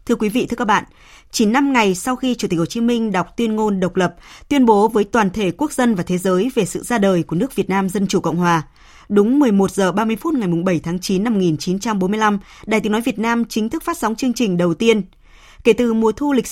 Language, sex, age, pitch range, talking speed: Vietnamese, female, 20-39, 190-240 Hz, 260 wpm